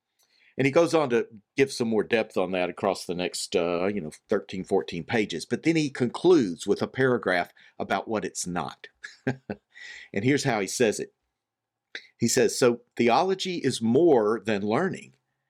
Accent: American